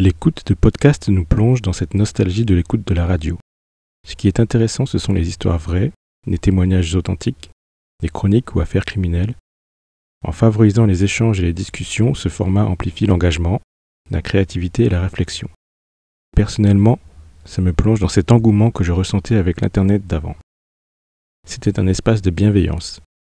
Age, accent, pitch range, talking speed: 40-59, French, 85-105 Hz, 165 wpm